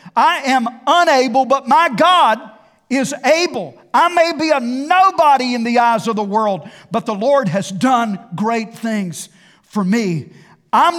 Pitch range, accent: 190-265 Hz, American